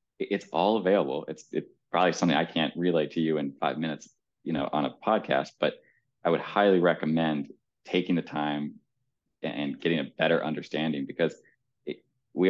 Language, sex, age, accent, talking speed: English, male, 20-39, American, 175 wpm